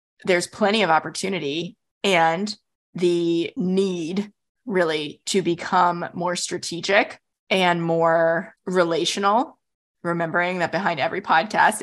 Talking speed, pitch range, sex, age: 100 wpm, 170-200 Hz, female, 20-39